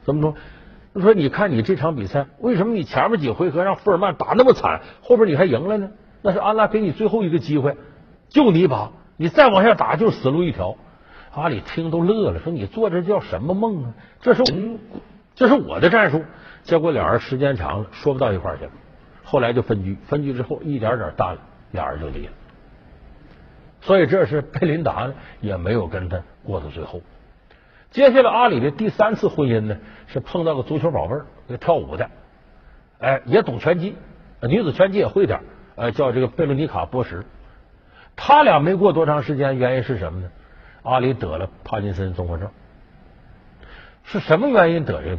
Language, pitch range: Chinese, 115-195 Hz